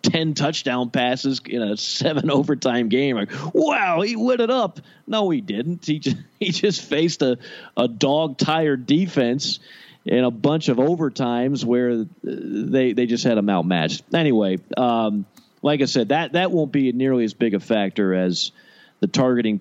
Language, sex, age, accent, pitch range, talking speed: English, male, 40-59, American, 105-150 Hz, 170 wpm